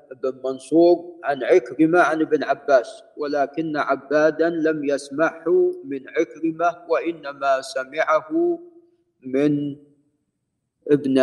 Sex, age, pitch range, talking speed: male, 50-69, 140-175 Hz, 90 wpm